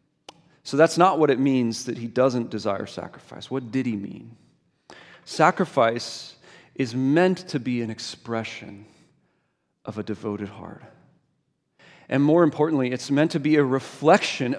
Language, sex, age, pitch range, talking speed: English, male, 40-59, 120-165 Hz, 145 wpm